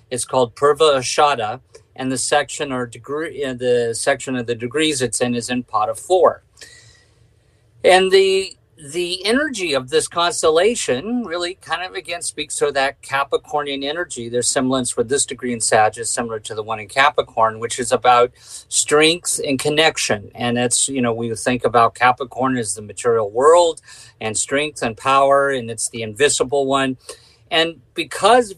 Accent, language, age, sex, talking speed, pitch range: American, English, 50-69, male, 165 wpm, 115-155 Hz